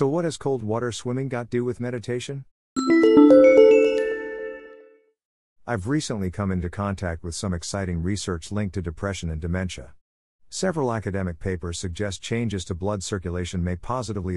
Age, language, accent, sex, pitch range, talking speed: 50-69, English, American, male, 90-130 Hz, 140 wpm